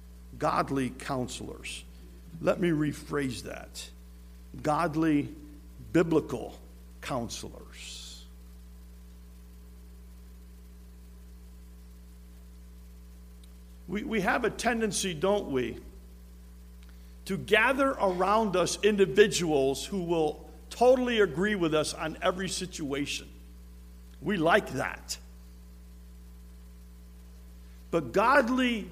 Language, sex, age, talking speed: English, male, 60-79, 75 wpm